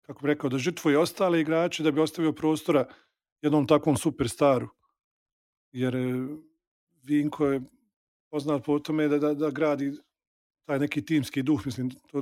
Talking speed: 150 wpm